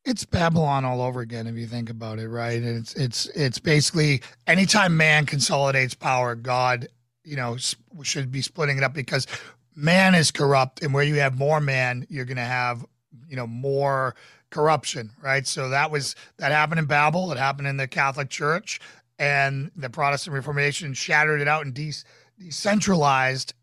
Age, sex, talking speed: 40-59, male, 180 wpm